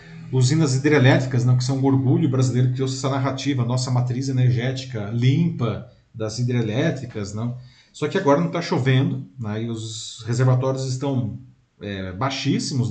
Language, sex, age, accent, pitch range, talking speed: Portuguese, male, 40-59, Brazilian, 120-145 Hz, 150 wpm